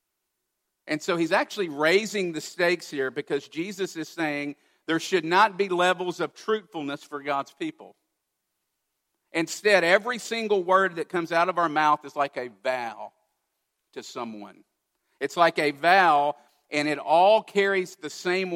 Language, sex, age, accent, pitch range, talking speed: English, male, 50-69, American, 150-195 Hz, 155 wpm